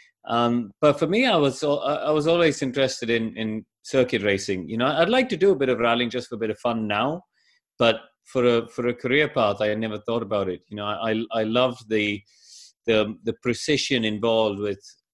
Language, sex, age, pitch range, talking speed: English, male, 30-49, 100-120 Hz, 220 wpm